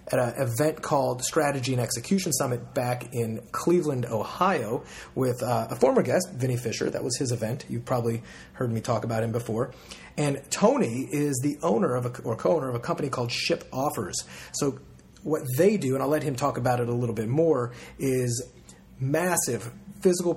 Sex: male